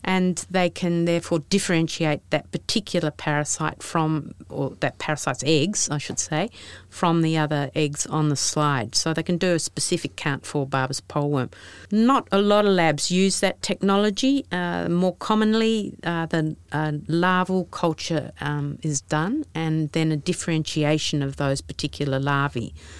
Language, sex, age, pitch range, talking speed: English, female, 50-69, 145-180 Hz, 160 wpm